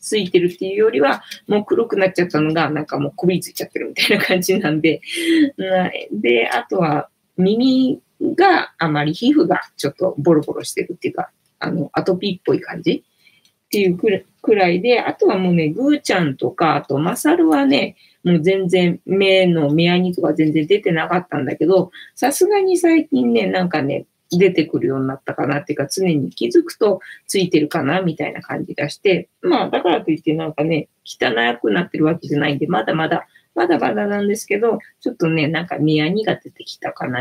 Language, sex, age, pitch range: Japanese, female, 20-39, 160-250 Hz